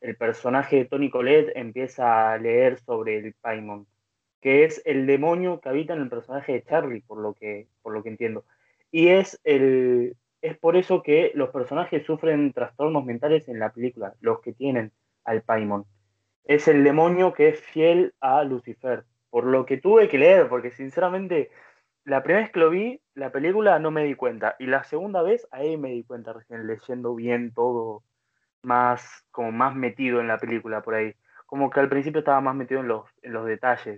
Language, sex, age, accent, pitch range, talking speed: Spanish, male, 20-39, Argentinian, 120-170 Hz, 195 wpm